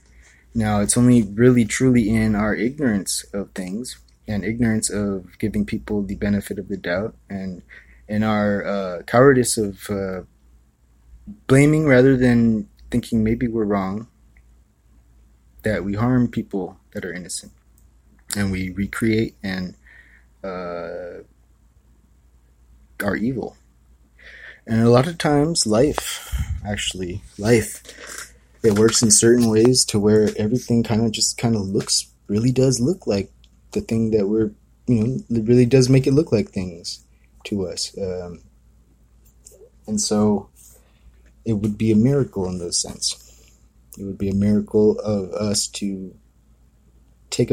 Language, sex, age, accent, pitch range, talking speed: English, male, 20-39, American, 70-110 Hz, 140 wpm